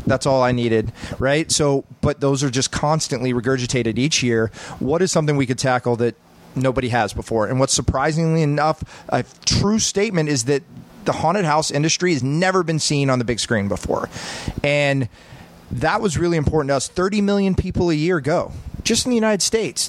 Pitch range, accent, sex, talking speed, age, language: 120-155 Hz, American, male, 195 wpm, 30-49, English